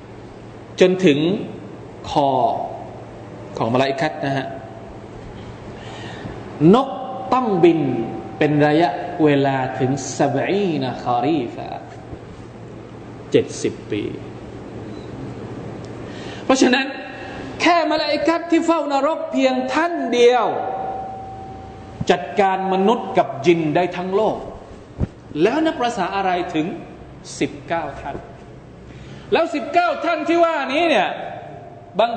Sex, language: male, Thai